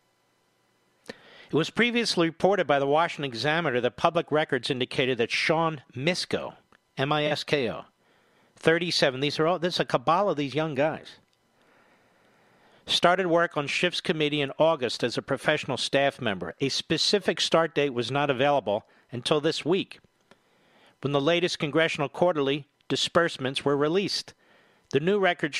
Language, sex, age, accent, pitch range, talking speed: English, male, 50-69, American, 140-175 Hz, 145 wpm